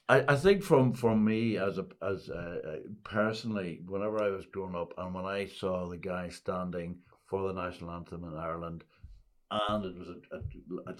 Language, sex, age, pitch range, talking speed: English, male, 60-79, 90-105 Hz, 195 wpm